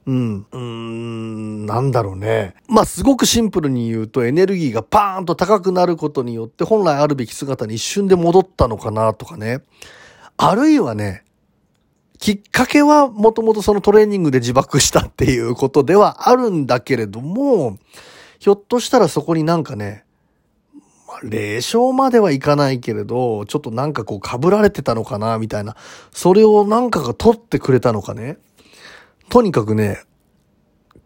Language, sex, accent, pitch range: Japanese, male, native, 115-190 Hz